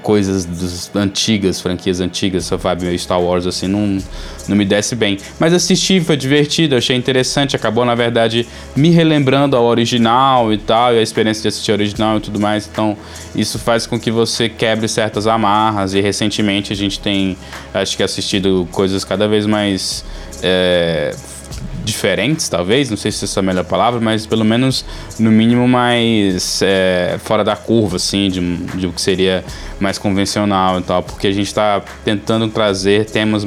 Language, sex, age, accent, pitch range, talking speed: Portuguese, male, 20-39, Brazilian, 95-120 Hz, 175 wpm